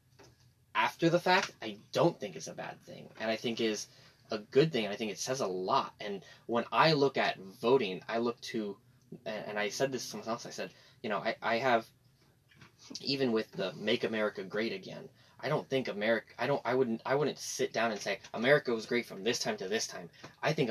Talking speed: 230 wpm